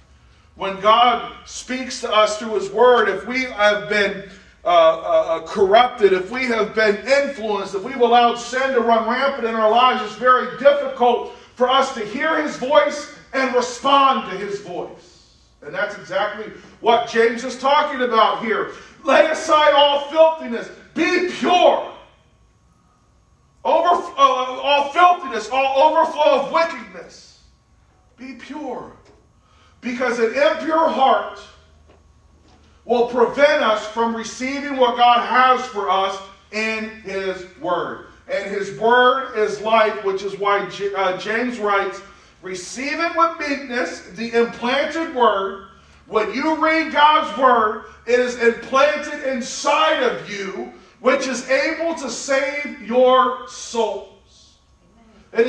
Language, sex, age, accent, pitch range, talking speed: English, male, 40-59, American, 210-285 Hz, 130 wpm